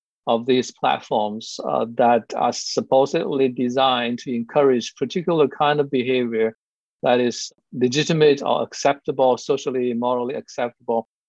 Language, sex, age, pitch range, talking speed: English, male, 60-79, 120-145 Hz, 115 wpm